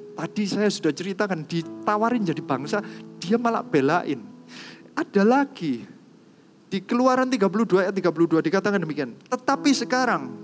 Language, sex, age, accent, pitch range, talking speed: Indonesian, male, 30-49, native, 160-225 Hz, 120 wpm